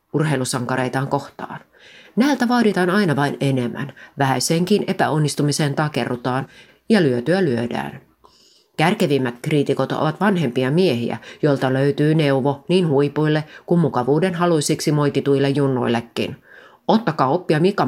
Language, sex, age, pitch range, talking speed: Finnish, female, 30-49, 130-170 Hz, 105 wpm